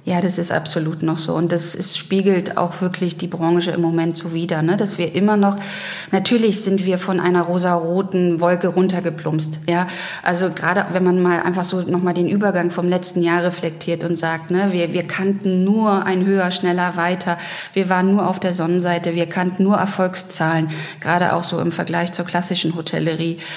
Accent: German